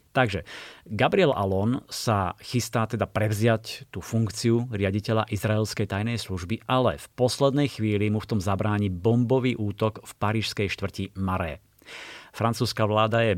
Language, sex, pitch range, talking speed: Slovak, male, 100-120 Hz, 135 wpm